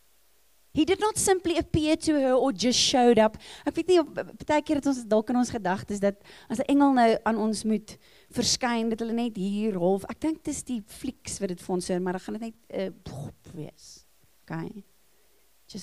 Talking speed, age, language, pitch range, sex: 190 wpm, 30-49, English, 200-280 Hz, female